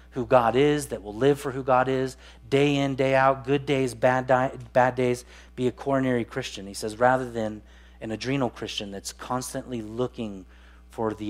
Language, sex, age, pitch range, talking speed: English, male, 30-49, 100-150 Hz, 185 wpm